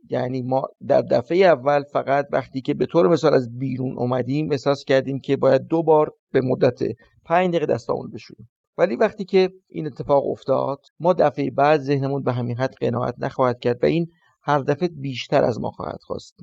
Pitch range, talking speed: 130-155 Hz, 185 wpm